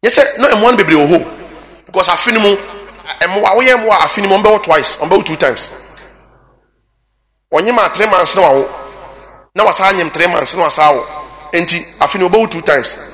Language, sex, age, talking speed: English, male, 30-49, 130 wpm